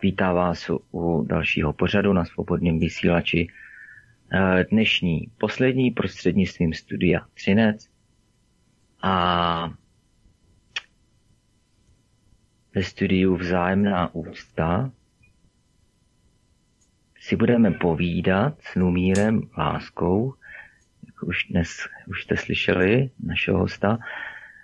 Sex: male